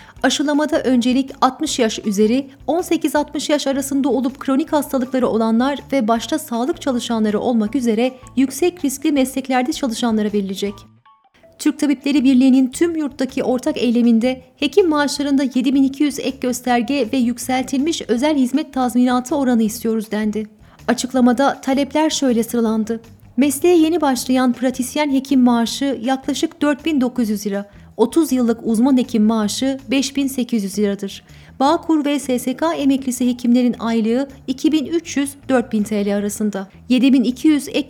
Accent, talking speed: native, 115 wpm